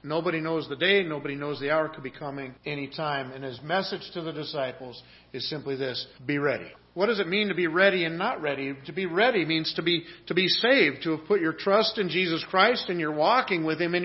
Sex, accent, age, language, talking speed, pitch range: male, American, 40-59, English, 250 wpm, 155-205 Hz